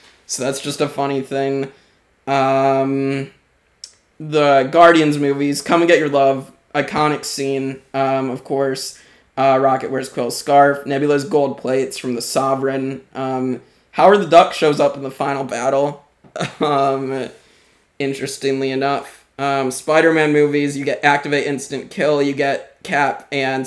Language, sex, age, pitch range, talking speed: English, male, 20-39, 130-140 Hz, 140 wpm